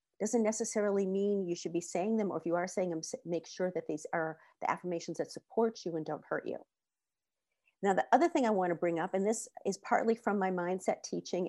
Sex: female